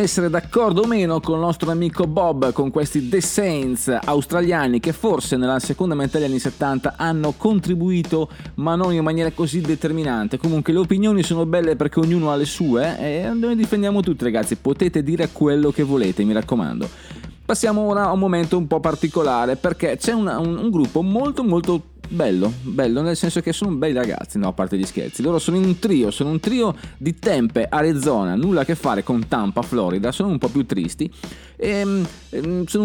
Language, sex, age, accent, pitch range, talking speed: Italian, male, 20-39, native, 140-180 Hz, 195 wpm